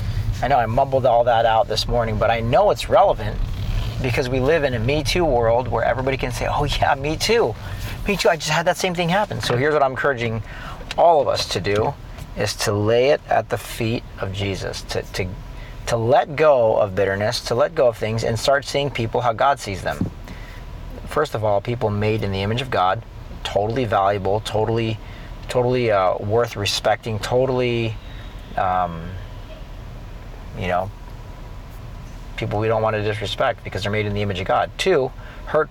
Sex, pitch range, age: male, 105-120 Hz, 40-59